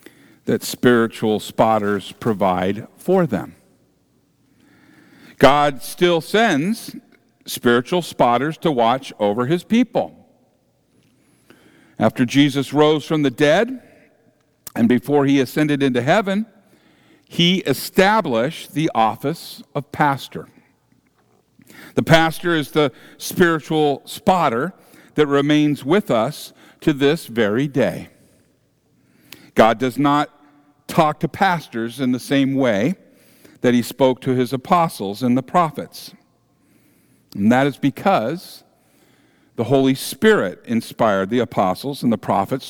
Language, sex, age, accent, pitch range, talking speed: English, male, 50-69, American, 125-165 Hz, 110 wpm